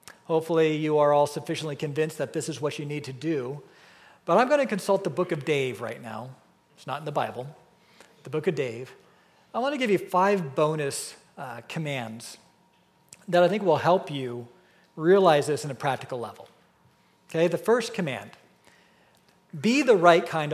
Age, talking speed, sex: 40-59, 185 wpm, male